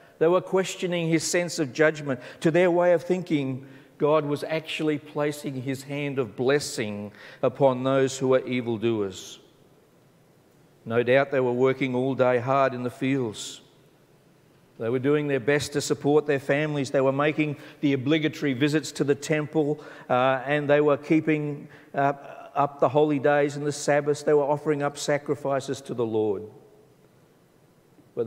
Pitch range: 130-155 Hz